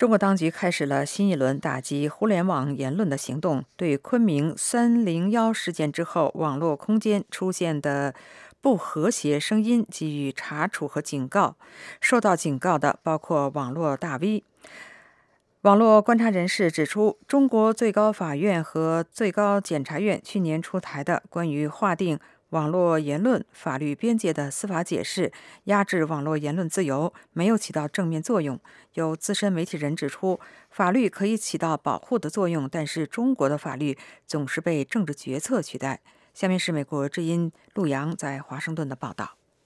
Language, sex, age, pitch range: English, female, 50-69, 150-205 Hz